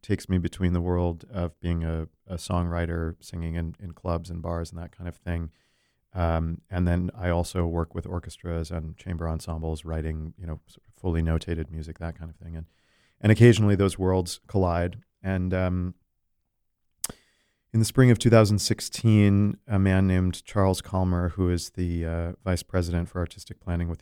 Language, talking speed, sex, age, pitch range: English, 175 wpm, male, 40-59, 85-100 Hz